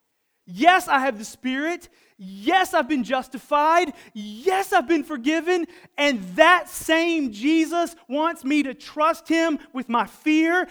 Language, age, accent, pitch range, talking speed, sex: English, 30-49, American, 195-320 Hz, 140 wpm, male